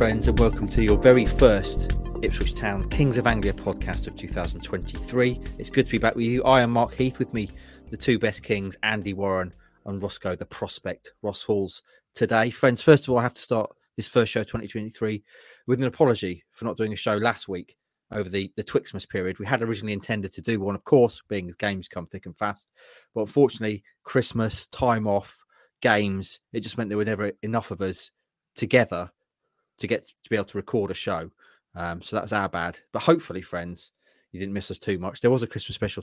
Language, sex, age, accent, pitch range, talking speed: English, male, 30-49, British, 95-120 Hz, 215 wpm